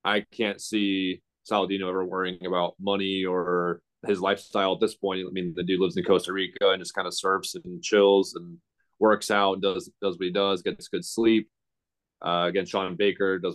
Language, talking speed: English, 205 wpm